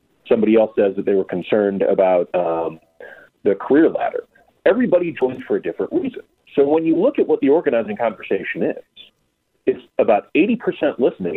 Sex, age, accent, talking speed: male, 40-59, American, 170 wpm